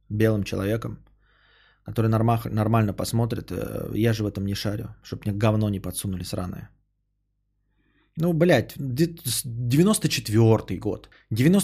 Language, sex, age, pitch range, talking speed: Bulgarian, male, 20-39, 105-160 Hz, 115 wpm